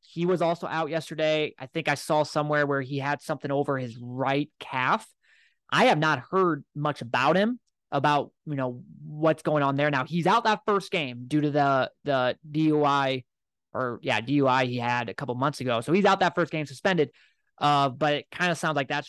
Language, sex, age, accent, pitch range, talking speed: English, male, 20-39, American, 135-155 Hz, 210 wpm